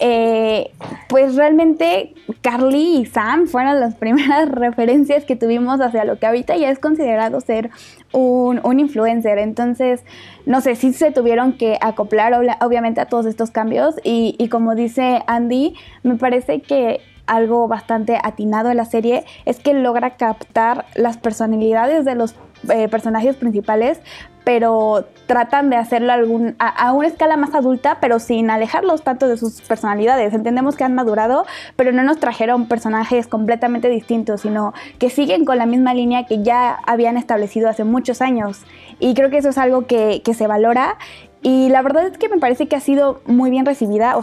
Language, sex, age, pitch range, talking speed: Spanish, female, 10-29, 225-260 Hz, 175 wpm